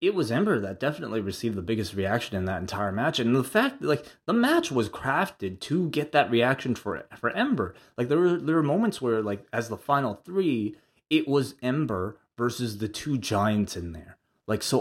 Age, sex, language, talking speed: 20-39, male, English, 210 wpm